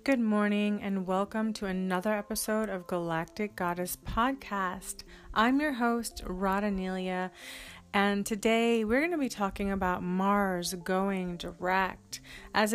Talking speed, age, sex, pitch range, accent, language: 130 wpm, 30-49, female, 180-220 Hz, American, English